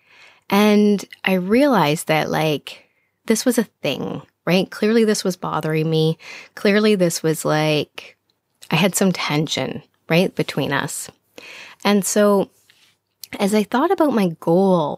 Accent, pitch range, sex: American, 160-220 Hz, female